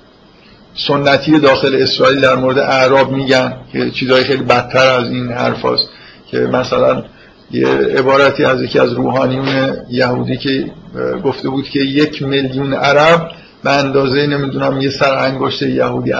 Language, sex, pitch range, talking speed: Persian, male, 130-155 Hz, 135 wpm